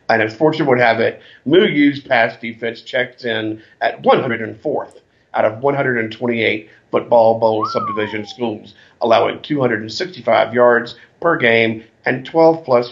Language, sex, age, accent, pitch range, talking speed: English, male, 50-69, American, 110-130 Hz, 125 wpm